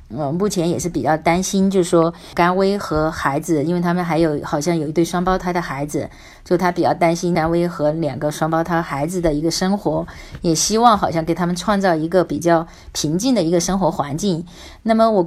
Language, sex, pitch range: Chinese, female, 160-200 Hz